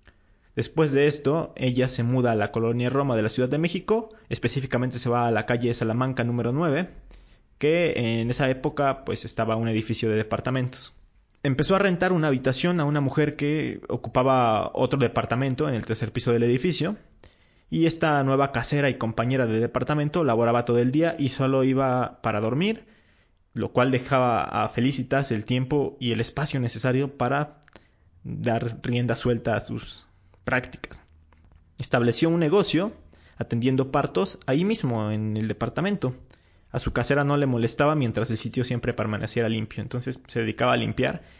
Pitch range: 115-145 Hz